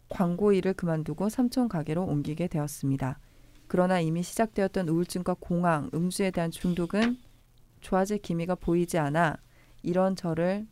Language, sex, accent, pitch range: Korean, female, native, 155-200 Hz